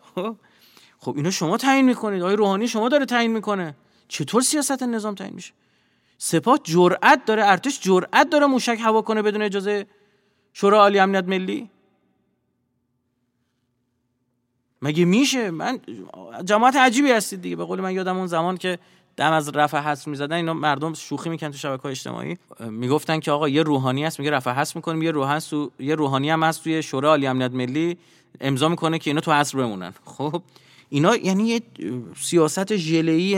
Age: 30-49